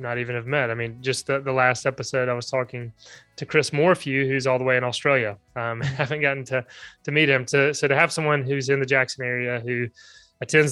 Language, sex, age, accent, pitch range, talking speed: English, male, 20-39, American, 125-145 Hz, 235 wpm